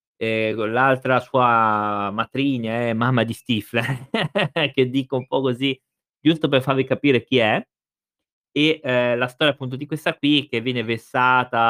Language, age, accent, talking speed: Italian, 20-39, native, 165 wpm